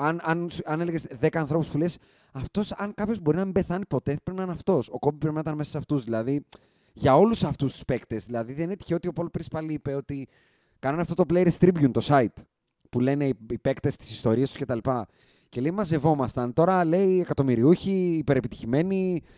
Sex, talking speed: male, 210 wpm